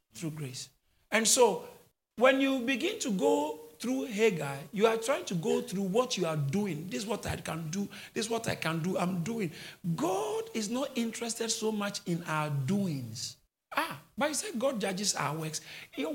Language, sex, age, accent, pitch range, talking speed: English, male, 50-69, Nigerian, 165-240 Hz, 195 wpm